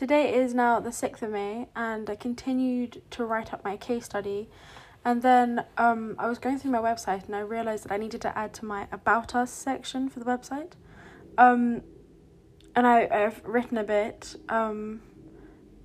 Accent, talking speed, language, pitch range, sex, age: British, 190 wpm, English, 205-240 Hz, female, 10-29